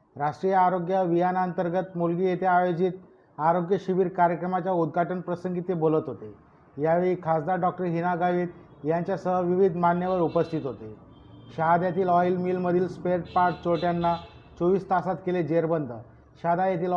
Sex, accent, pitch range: male, native, 170-185 Hz